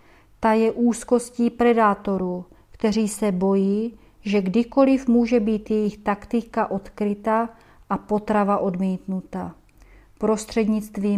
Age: 40-59